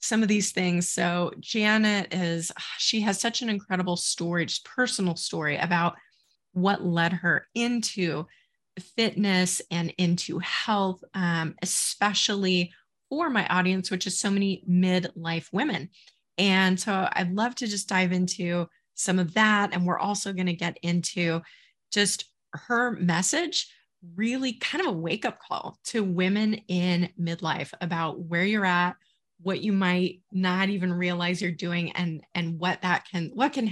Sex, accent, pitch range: female, American, 175-215 Hz